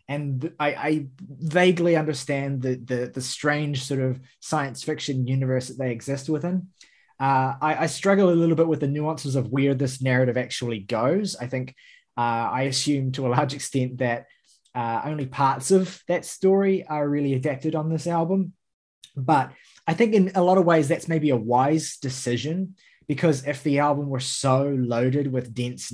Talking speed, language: 180 wpm, English